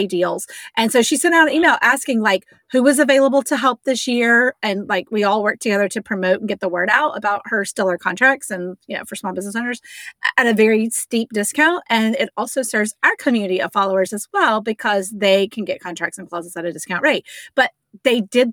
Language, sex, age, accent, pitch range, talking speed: English, female, 30-49, American, 195-245 Hz, 225 wpm